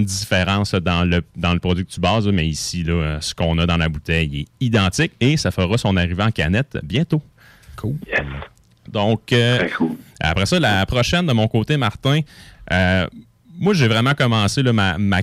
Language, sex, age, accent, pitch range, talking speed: French, male, 30-49, Canadian, 85-110 Hz, 185 wpm